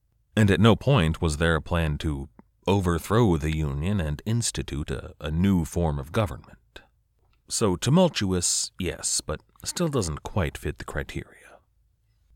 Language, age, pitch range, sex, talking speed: English, 30-49, 75-110 Hz, male, 145 wpm